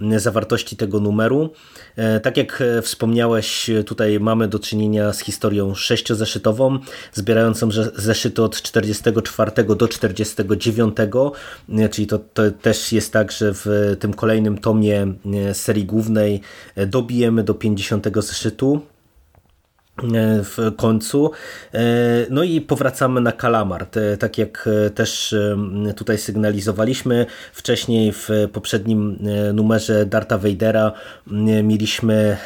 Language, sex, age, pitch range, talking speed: Polish, male, 20-39, 105-115 Hz, 100 wpm